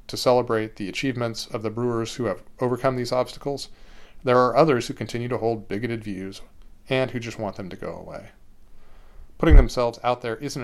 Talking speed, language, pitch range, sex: 190 wpm, English, 110-125 Hz, male